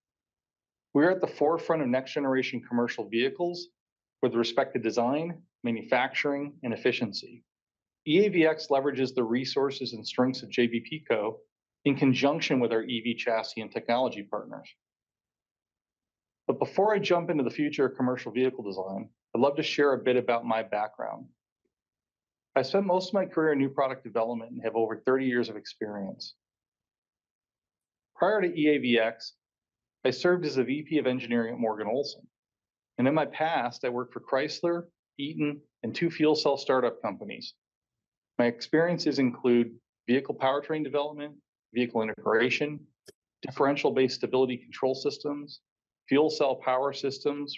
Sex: male